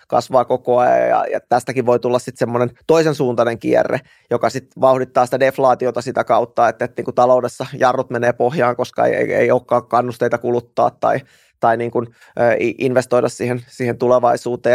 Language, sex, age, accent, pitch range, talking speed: Finnish, male, 20-39, native, 125-135 Hz, 175 wpm